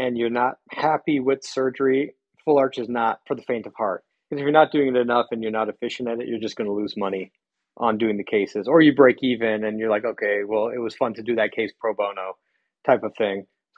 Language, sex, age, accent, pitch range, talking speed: English, male, 40-59, American, 115-140 Hz, 255 wpm